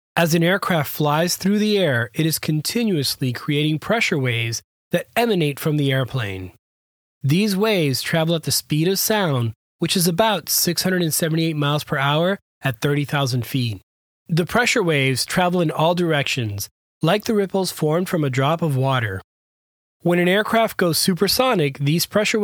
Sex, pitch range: male, 140-185 Hz